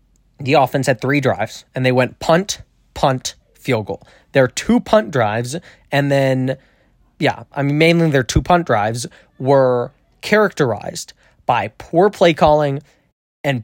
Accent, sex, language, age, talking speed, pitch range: American, male, English, 20-39, 145 wpm, 125-170 Hz